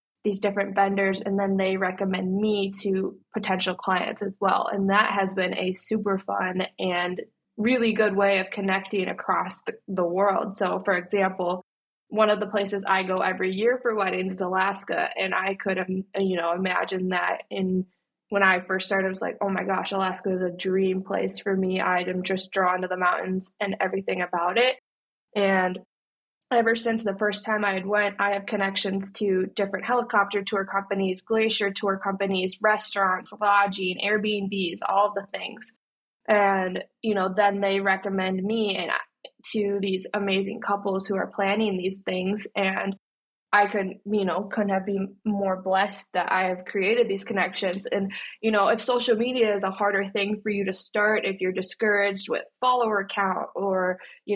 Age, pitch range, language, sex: 20-39, 190-210 Hz, English, female